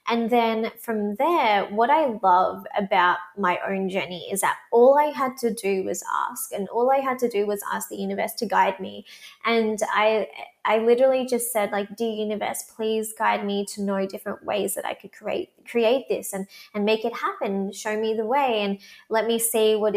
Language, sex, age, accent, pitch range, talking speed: English, female, 20-39, Australian, 200-245 Hz, 205 wpm